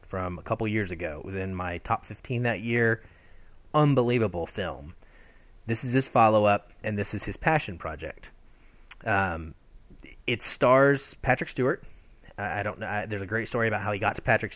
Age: 30-49